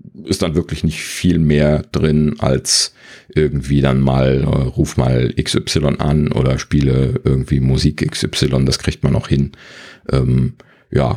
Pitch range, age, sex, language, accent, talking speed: 65-75 Hz, 40-59, male, German, German, 150 wpm